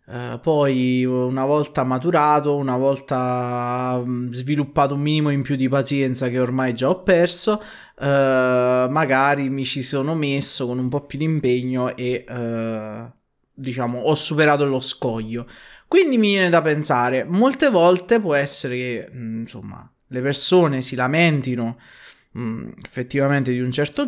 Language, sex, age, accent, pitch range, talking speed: Italian, male, 20-39, native, 120-150 Hz, 145 wpm